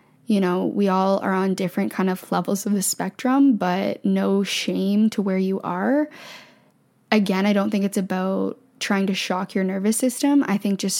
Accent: American